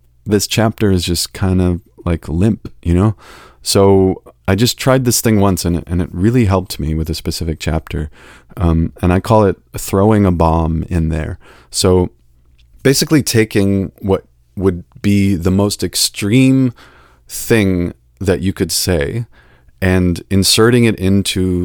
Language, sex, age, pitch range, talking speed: English, male, 30-49, 85-100 Hz, 150 wpm